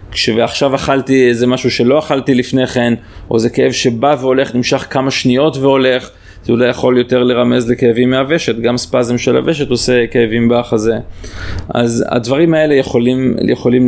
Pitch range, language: 115-135 Hz, Hebrew